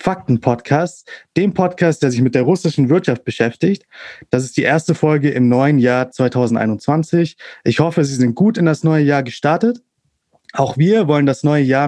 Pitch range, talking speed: 135-170 Hz, 180 wpm